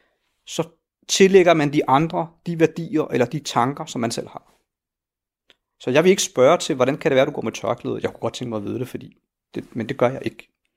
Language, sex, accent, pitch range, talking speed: Danish, male, native, 125-165 Hz, 240 wpm